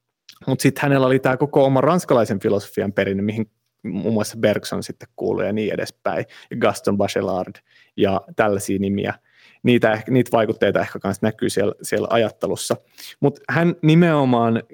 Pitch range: 105-130 Hz